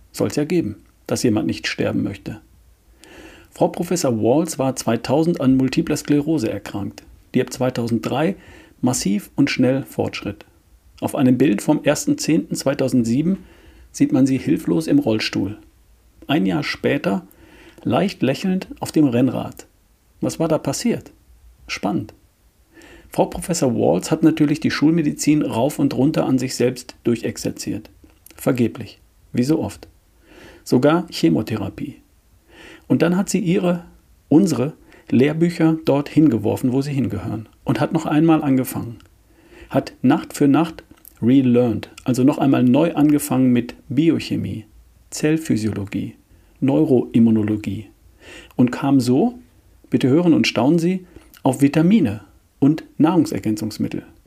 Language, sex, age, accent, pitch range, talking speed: German, male, 50-69, German, 115-160 Hz, 125 wpm